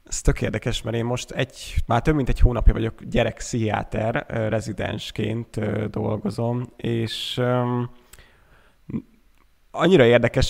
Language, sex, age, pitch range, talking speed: Hungarian, male, 20-39, 110-125 Hz, 110 wpm